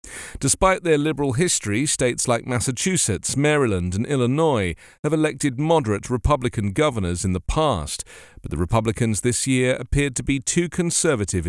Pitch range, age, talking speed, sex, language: 100-140 Hz, 40-59, 145 wpm, male, English